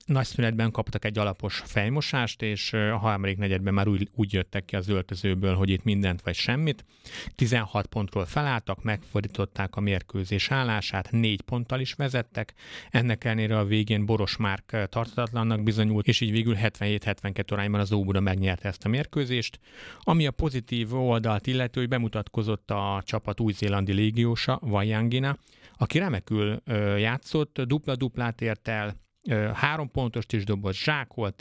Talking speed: 140 wpm